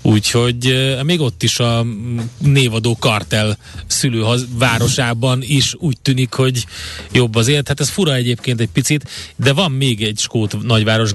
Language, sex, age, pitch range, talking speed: Hungarian, male, 30-49, 105-130 Hz, 140 wpm